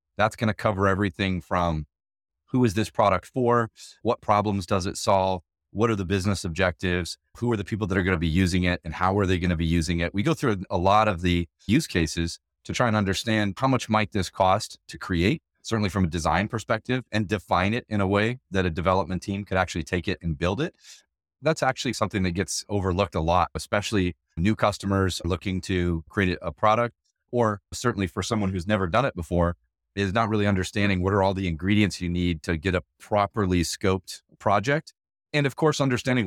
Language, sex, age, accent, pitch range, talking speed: English, male, 30-49, American, 90-105 Hz, 210 wpm